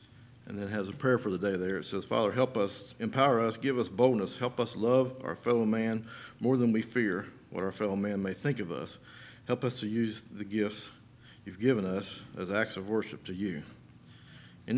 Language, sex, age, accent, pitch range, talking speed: English, male, 50-69, American, 110-140 Hz, 220 wpm